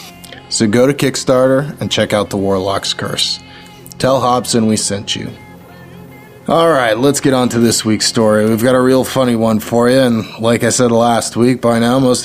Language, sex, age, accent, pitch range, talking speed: English, male, 20-39, American, 105-130 Hz, 195 wpm